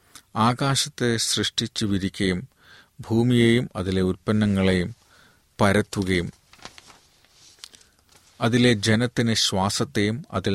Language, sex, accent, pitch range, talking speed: Malayalam, male, native, 95-110 Hz, 65 wpm